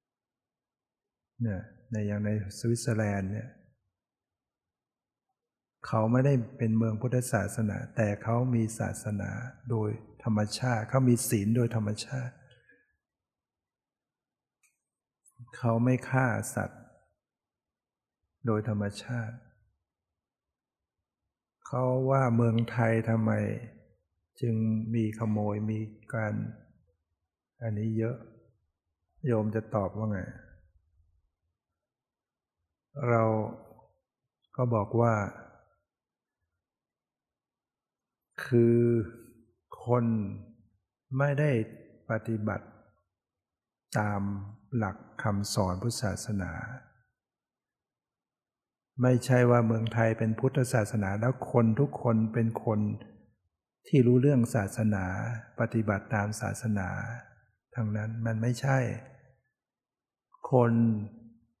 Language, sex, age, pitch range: English, male, 60-79, 105-120 Hz